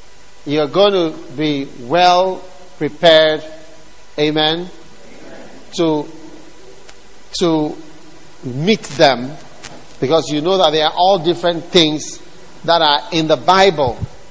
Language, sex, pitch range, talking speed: English, male, 130-165 Hz, 105 wpm